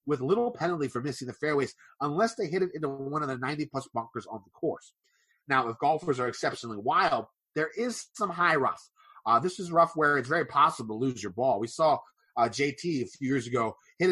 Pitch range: 130-175 Hz